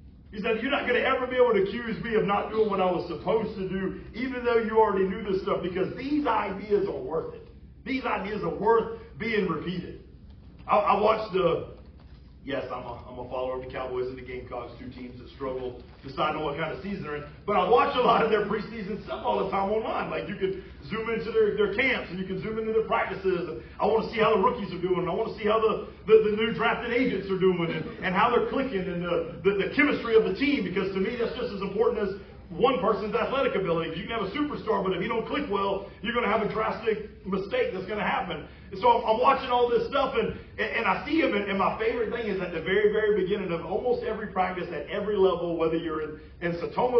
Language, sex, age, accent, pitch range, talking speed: English, male, 40-59, American, 165-225 Hz, 255 wpm